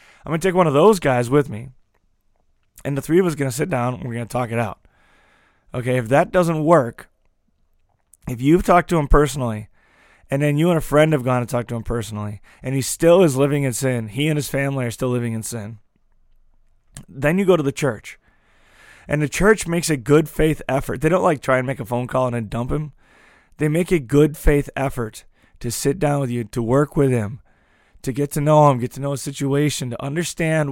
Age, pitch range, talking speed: 20-39, 120-150 Hz, 235 wpm